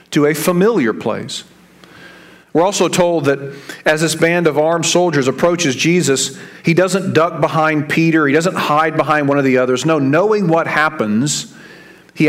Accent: American